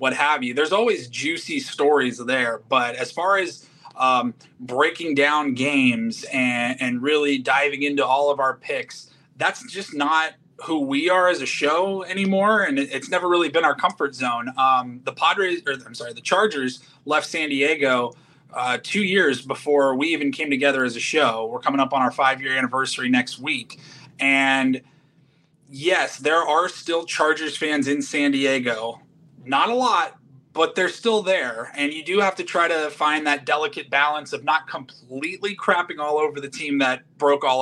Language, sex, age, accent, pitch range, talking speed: English, male, 30-49, American, 135-170 Hz, 180 wpm